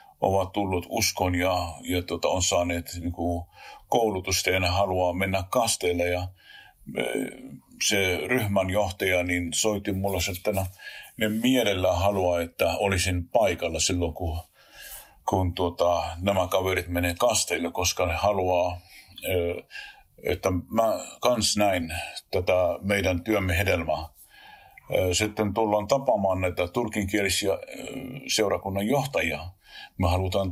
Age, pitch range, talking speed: 50-69, 90-100 Hz, 110 wpm